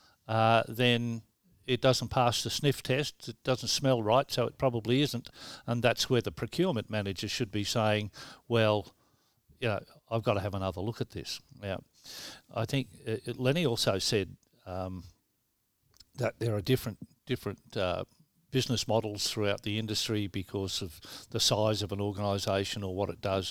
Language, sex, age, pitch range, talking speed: English, male, 50-69, 100-120 Hz, 165 wpm